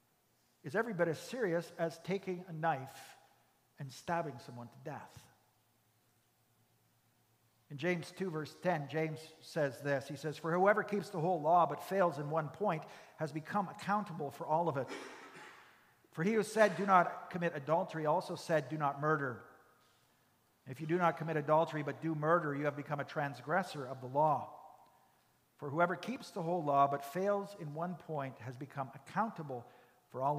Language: English